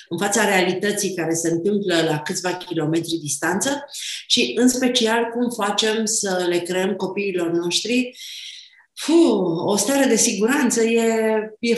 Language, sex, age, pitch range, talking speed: Romanian, female, 30-49, 180-245 Hz, 140 wpm